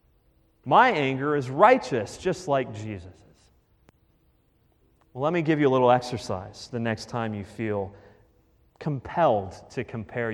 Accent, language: American, English